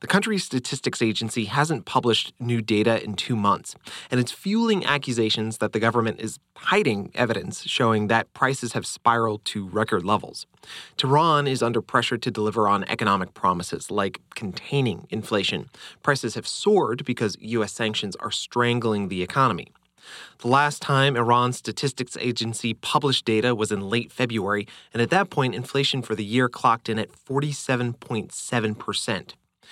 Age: 30-49